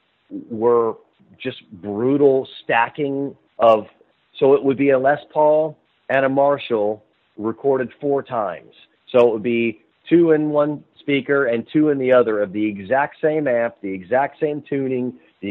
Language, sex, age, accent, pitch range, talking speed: English, male, 40-59, American, 105-135 Hz, 160 wpm